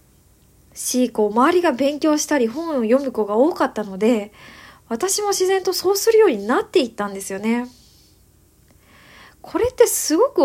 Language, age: Japanese, 20-39